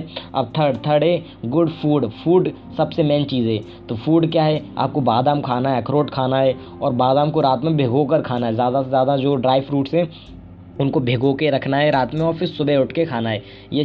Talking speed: 230 wpm